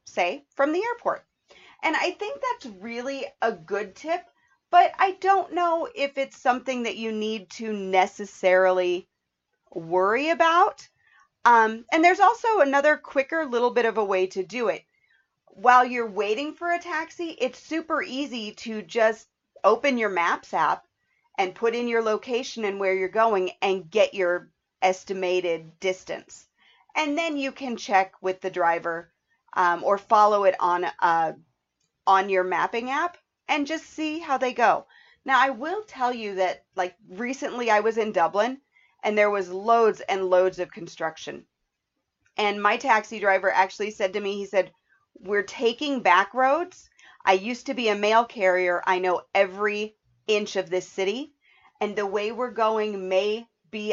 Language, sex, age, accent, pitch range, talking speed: English, female, 40-59, American, 190-265 Hz, 165 wpm